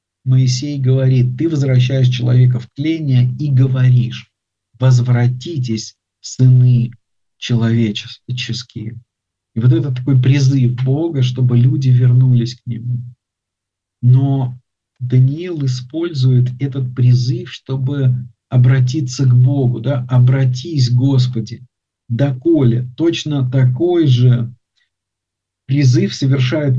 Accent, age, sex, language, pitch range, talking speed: native, 50-69, male, Russian, 120-130 Hz, 90 wpm